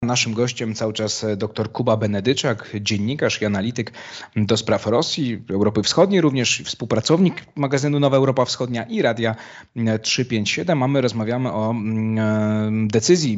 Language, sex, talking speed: Polish, male, 125 wpm